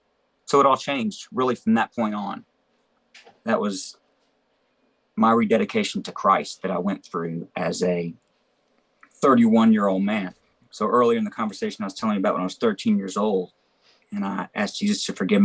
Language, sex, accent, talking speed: English, male, American, 185 wpm